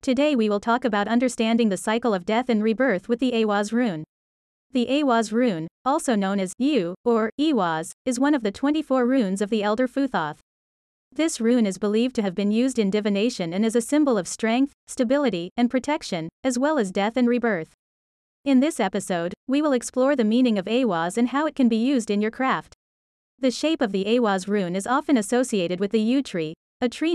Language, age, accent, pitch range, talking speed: English, 30-49, American, 200-255 Hz, 210 wpm